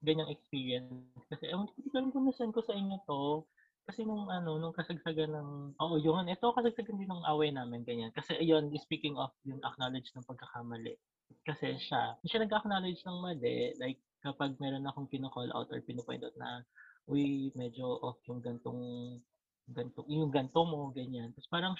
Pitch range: 130-175 Hz